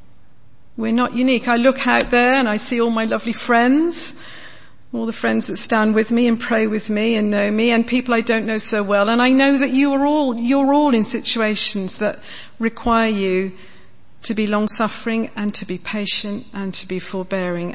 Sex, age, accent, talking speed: female, 50-69, British, 210 wpm